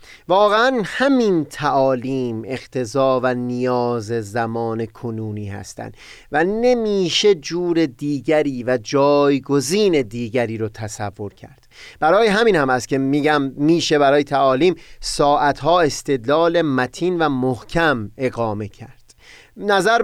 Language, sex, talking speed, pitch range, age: Persian, male, 110 wpm, 125-175 Hz, 30-49